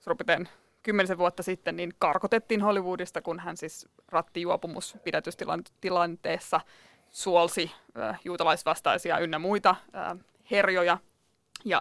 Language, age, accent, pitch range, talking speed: Finnish, 20-39, native, 170-200 Hz, 90 wpm